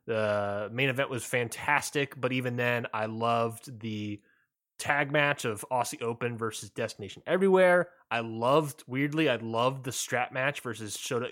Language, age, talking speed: English, 20-39, 160 wpm